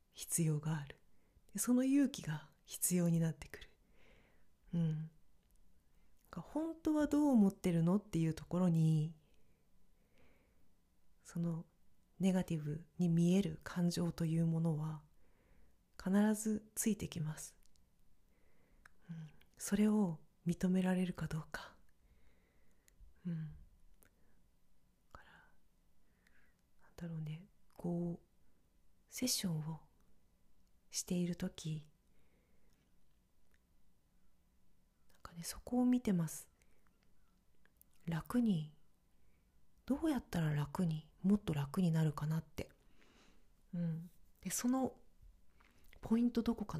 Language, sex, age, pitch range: Japanese, female, 30-49, 155-195 Hz